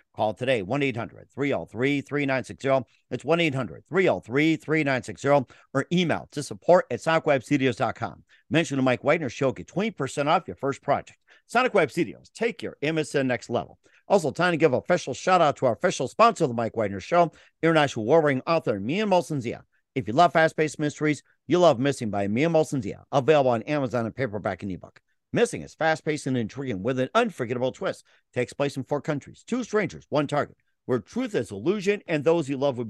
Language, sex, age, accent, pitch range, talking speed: English, male, 50-69, American, 125-160 Hz, 195 wpm